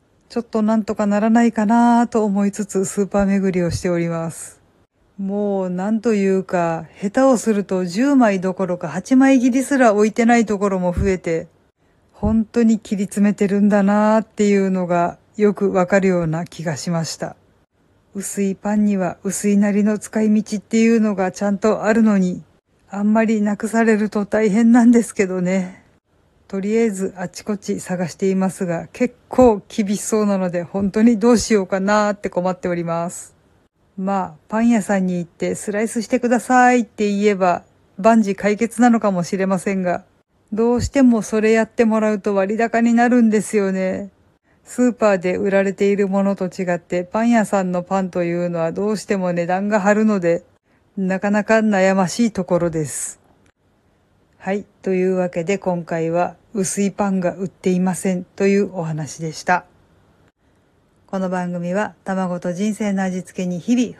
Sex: female